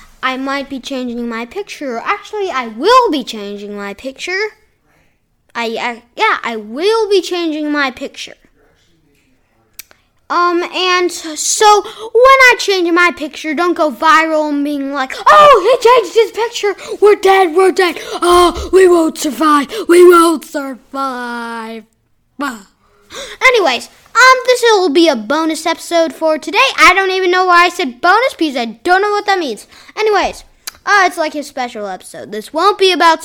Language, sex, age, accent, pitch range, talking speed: English, female, 10-29, American, 260-400 Hz, 160 wpm